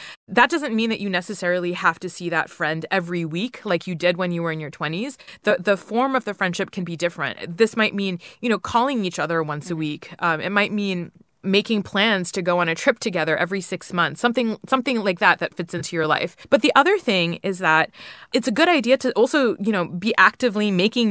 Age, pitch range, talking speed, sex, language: 20-39, 175-230 Hz, 235 wpm, female, English